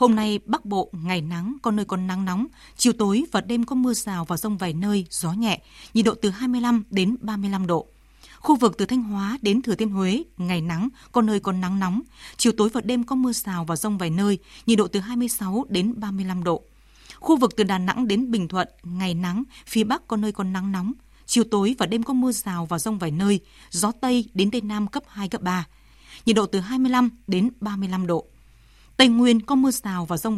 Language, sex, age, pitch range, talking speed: Vietnamese, female, 20-39, 185-240 Hz, 230 wpm